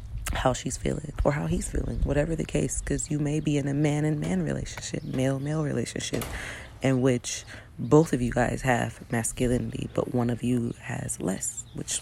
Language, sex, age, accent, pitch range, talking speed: English, female, 30-49, American, 115-135 Hz, 190 wpm